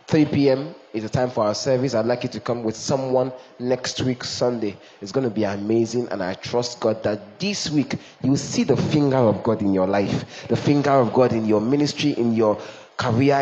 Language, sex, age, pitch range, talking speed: English, male, 20-39, 115-145 Hz, 220 wpm